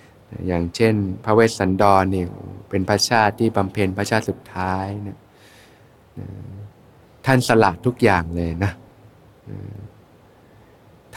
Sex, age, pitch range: male, 20-39, 100-125 Hz